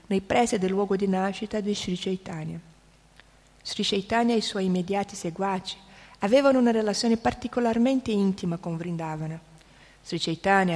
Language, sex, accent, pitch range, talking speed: Italian, female, native, 185-235 Hz, 140 wpm